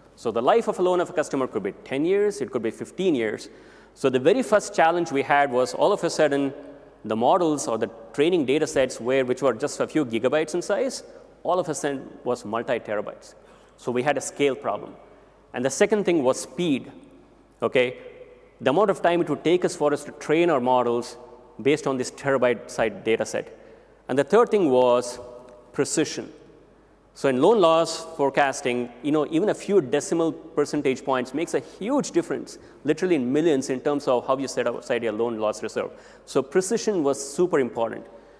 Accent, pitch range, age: Indian, 130-180 Hz, 30-49